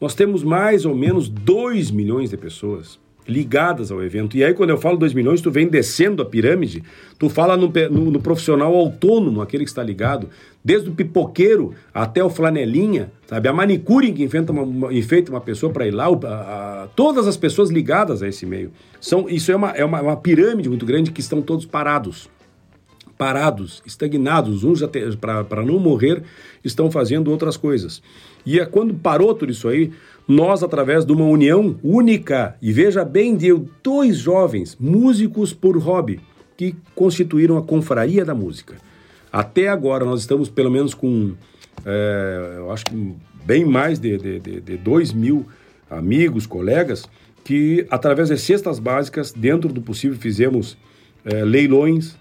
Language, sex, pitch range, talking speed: Portuguese, male, 115-170 Hz, 165 wpm